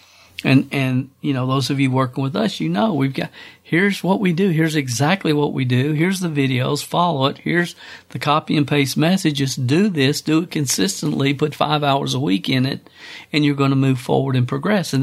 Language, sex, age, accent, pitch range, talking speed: English, male, 50-69, American, 125-150 Hz, 220 wpm